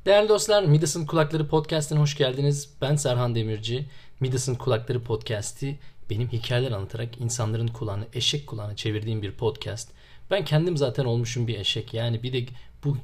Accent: native